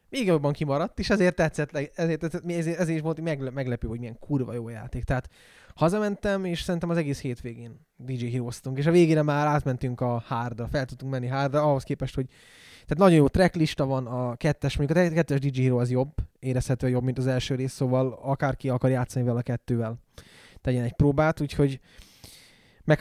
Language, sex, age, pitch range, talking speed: Hungarian, male, 10-29, 125-150 Hz, 185 wpm